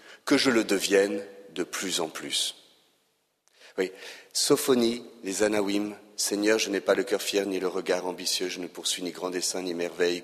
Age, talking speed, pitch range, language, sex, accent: 40-59, 180 wpm, 95-130 Hz, French, male, French